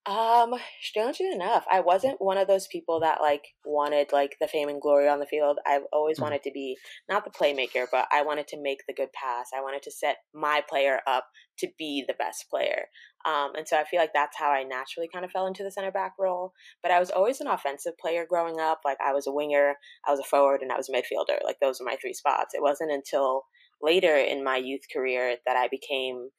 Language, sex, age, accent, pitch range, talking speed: English, female, 20-39, American, 135-155 Hz, 240 wpm